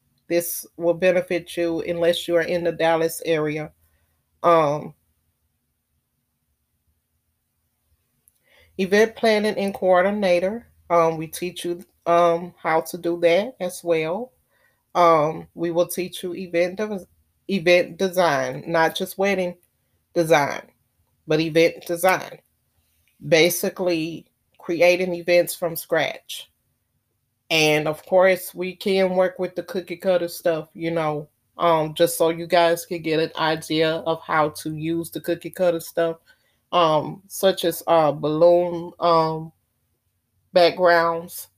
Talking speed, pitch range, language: 120 wpm, 160-175 Hz, English